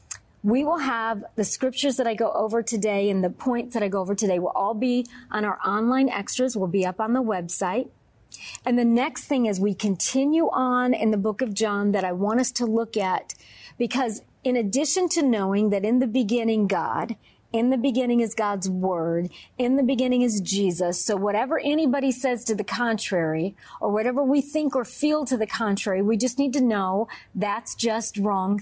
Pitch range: 205-250 Hz